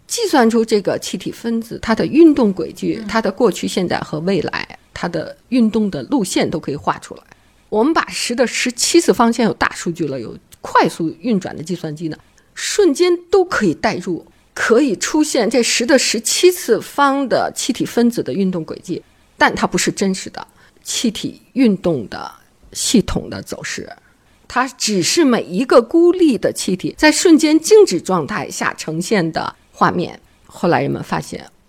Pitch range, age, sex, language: 180-280 Hz, 50-69, female, Chinese